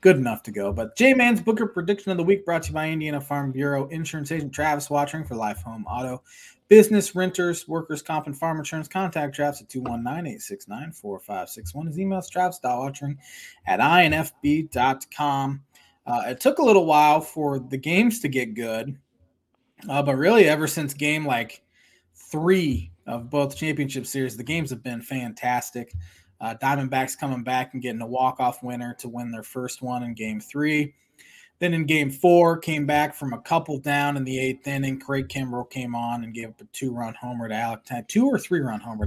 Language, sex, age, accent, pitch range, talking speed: English, male, 20-39, American, 115-155 Hz, 185 wpm